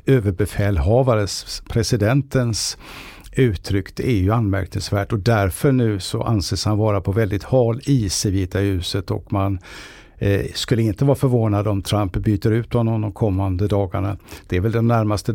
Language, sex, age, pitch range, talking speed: English, male, 60-79, 95-115 Hz, 160 wpm